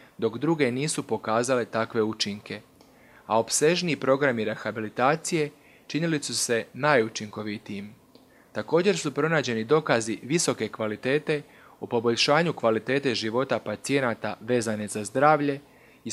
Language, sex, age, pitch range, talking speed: Croatian, male, 30-49, 110-145 Hz, 110 wpm